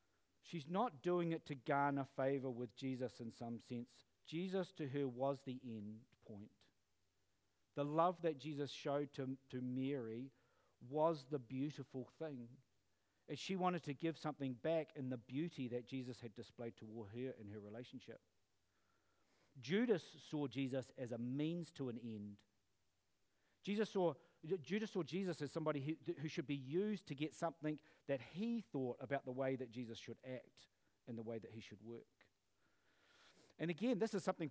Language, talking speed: English, 165 wpm